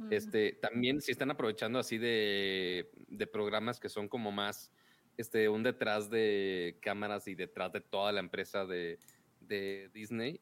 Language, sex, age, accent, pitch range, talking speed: Spanish, male, 30-49, Mexican, 100-125 Hz, 155 wpm